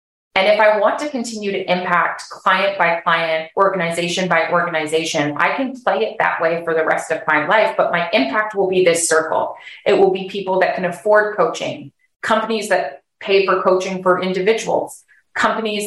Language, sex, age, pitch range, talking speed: English, female, 20-39, 175-200 Hz, 185 wpm